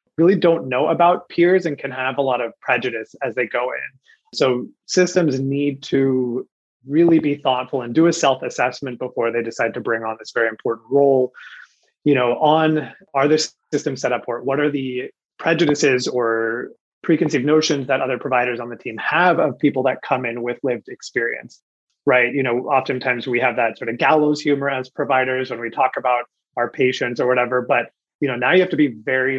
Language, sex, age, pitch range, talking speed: English, male, 30-49, 125-150 Hz, 200 wpm